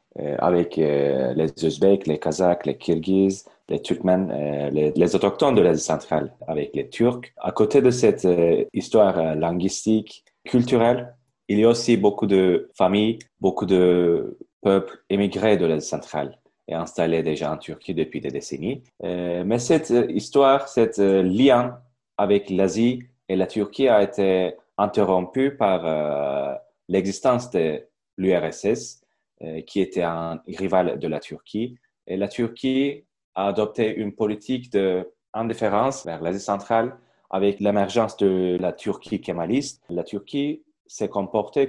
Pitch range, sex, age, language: 90-115 Hz, male, 30-49, Turkish